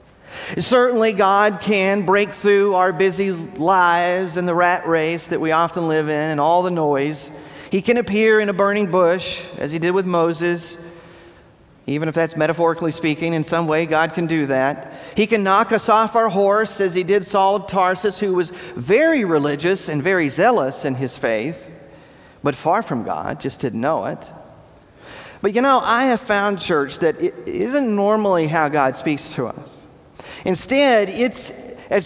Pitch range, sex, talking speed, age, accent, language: 145-200 Hz, male, 175 wpm, 40-59, American, English